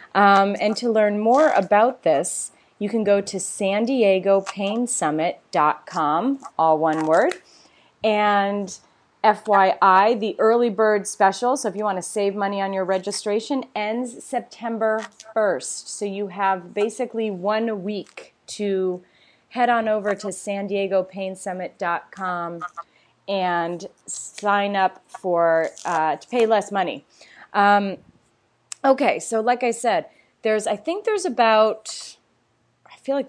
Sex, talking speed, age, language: female, 125 wpm, 30-49, English